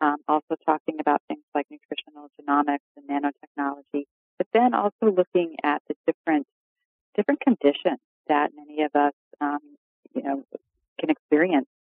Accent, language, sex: American, English, female